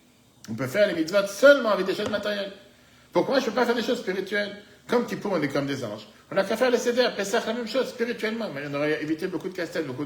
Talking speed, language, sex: 270 wpm, French, male